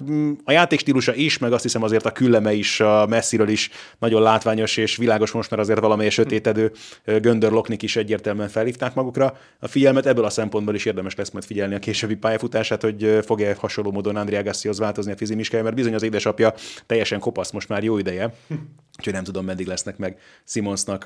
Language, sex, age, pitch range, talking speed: Hungarian, male, 30-49, 105-125 Hz, 190 wpm